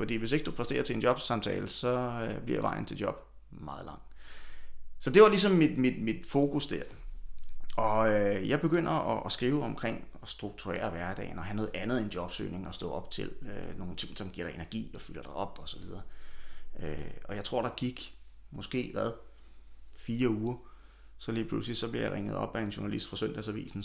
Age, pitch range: 30-49, 95-115 Hz